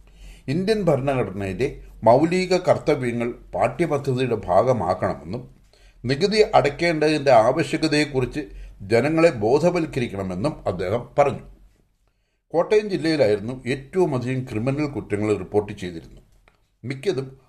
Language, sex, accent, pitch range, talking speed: English, male, Indian, 105-150 Hz, 105 wpm